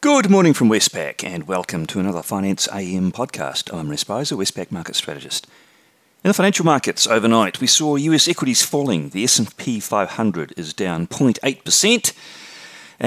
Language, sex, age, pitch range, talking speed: English, male, 40-59, 85-130 Hz, 145 wpm